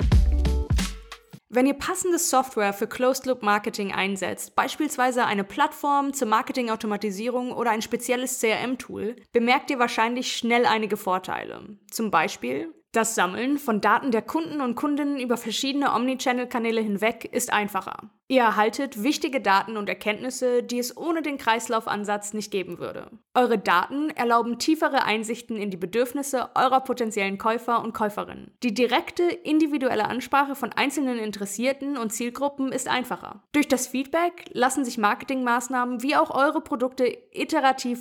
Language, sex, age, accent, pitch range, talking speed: German, female, 20-39, German, 215-270 Hz, 140 wpm